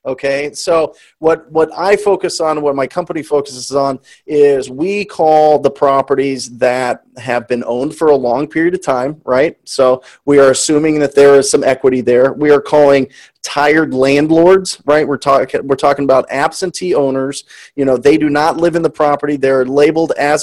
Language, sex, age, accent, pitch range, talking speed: English, male, 30-49, American, 130-165 Hz, 185 wpm